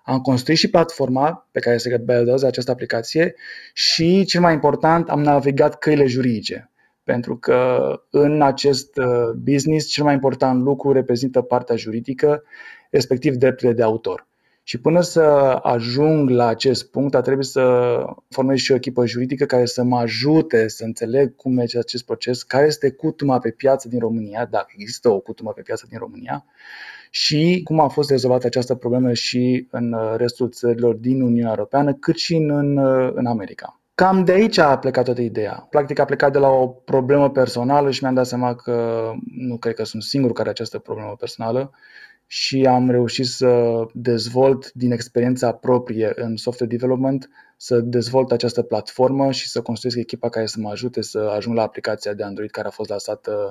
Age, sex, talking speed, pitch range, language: 20-39, male, 175 wpm, 120-140 Hz, Romanian